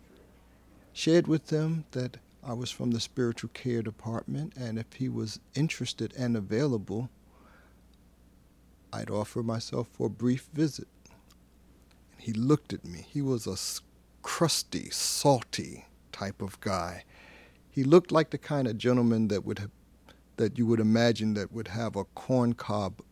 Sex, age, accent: male, 40-59, American